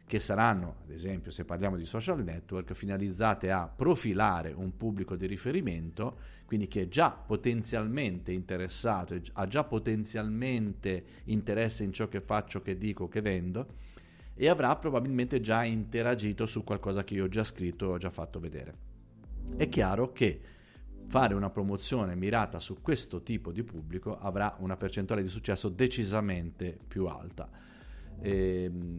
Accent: native